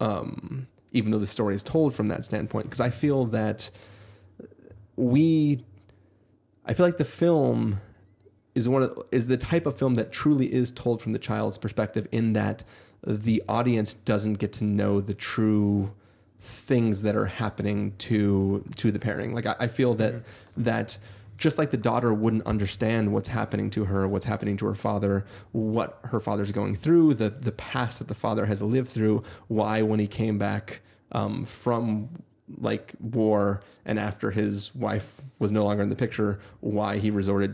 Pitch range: 105-120 Hz